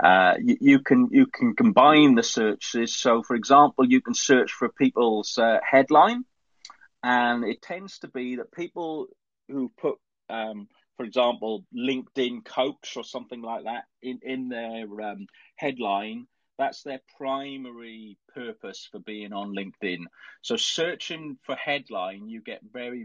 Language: English